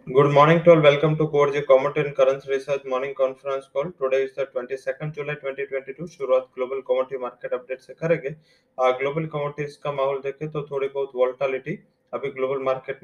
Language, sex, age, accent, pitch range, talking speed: English, male, 20-39, Indian, 135-155 Hz, 175 wpm